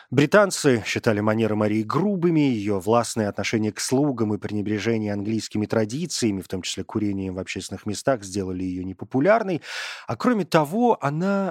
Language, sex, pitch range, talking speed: Russian, male, 105-150 Hz, 145 wpm